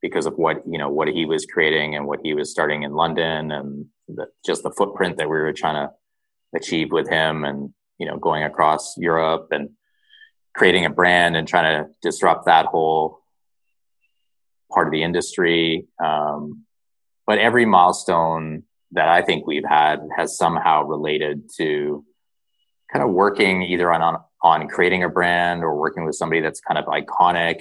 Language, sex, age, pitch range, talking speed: English, male, 30-49, 75-90 Hz, 170 wpm